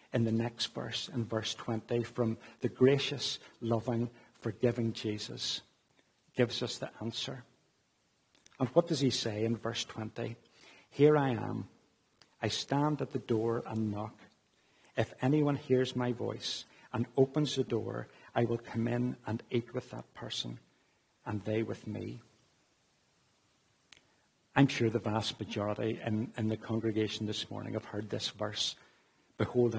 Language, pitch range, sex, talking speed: English, 115-130 Hz, male, 145 wpm